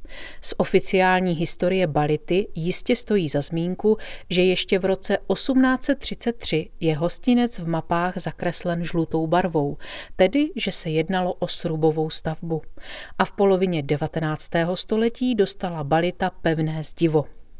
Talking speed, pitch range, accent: 125 wpm, 160-205 Hz, native